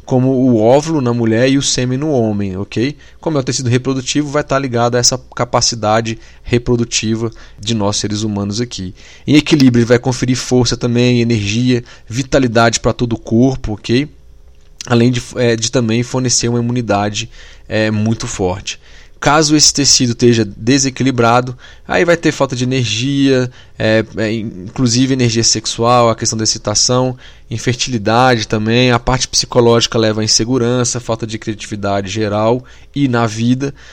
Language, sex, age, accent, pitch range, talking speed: Portuguese, male, 20-39, Brazilian, 115-140 Hz, 150 wpm